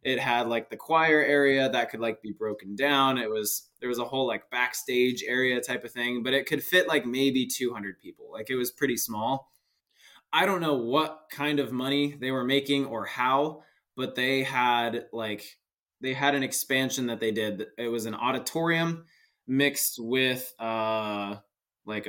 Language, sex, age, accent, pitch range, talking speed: English, male, 20-39, American, 115-140 Hz, 185 wpm